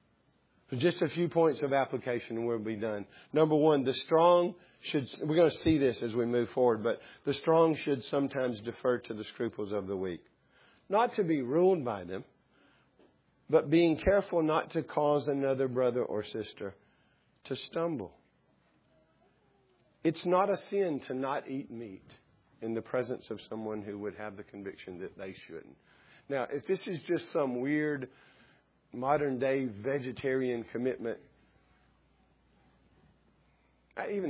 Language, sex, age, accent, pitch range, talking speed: English, male, 50-69, American, 115-160 Hz, 150 wpm